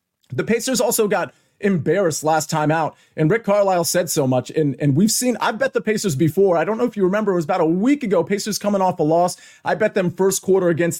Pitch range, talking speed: 155-200 Hz, 250 wpm